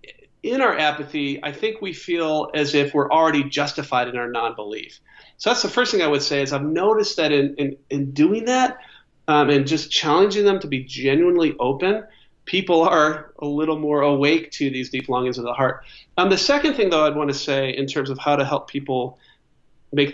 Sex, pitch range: male, 140-190 Hz